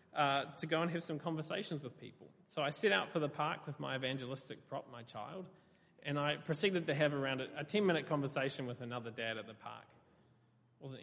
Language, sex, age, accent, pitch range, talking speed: English, male, 20-39, Australian, 125-150 Hz, 220 wpm